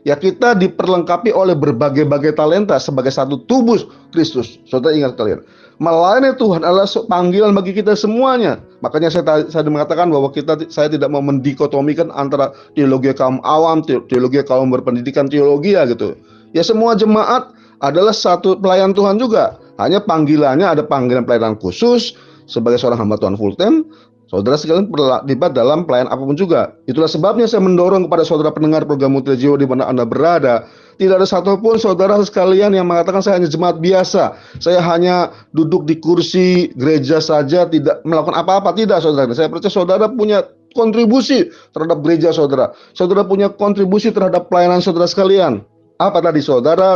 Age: 30-49